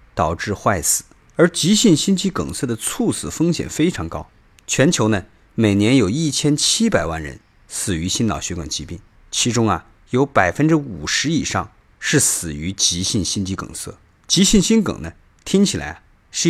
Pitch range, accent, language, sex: 95-145 Hz, native, Chinese, male